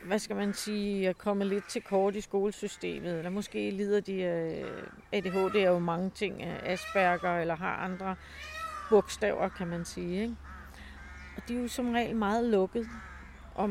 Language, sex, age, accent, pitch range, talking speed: Danish, female, 40-59, native, 190-220 Hz, 170 wpm